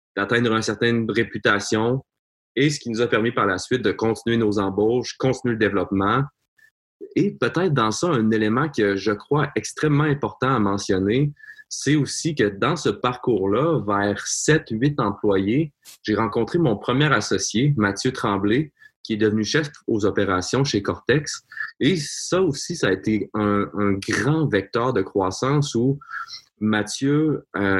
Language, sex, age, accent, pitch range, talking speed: English, male, 20-39, Canadian, 105-135 Hz, 155 wpm